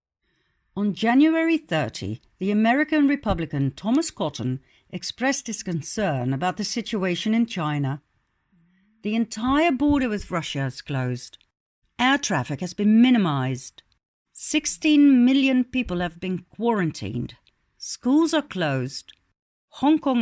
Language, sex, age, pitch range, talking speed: English, female, 60-79, 155-255 Hz, 115 wpm